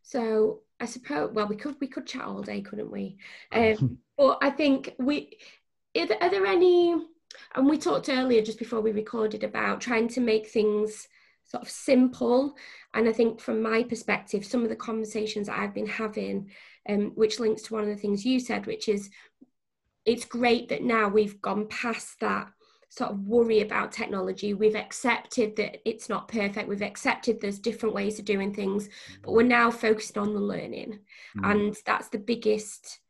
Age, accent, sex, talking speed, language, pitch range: 20-39, British, female, 185 wpm, English, 210-235 Hz